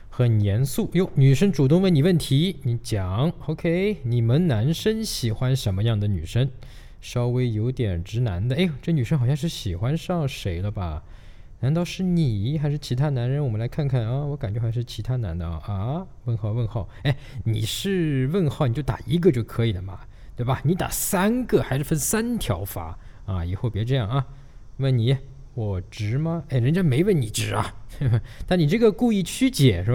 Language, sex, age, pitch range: Chinese, male, 20-39, 105-150 Hz